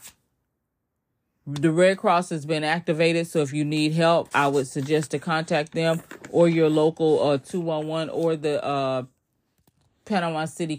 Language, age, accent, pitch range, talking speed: English, 30-49, American, 130-155 Hz, 150 wpm